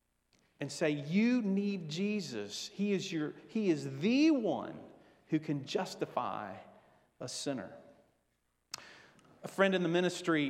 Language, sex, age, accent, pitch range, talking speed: English, male, 40-59, American, 130-175 Hz, 125 wpm